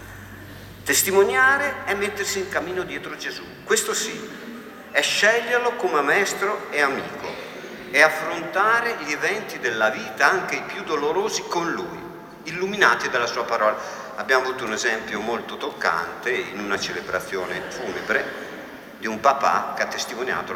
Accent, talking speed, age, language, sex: native, 135 wpm, 50-69, Italian, male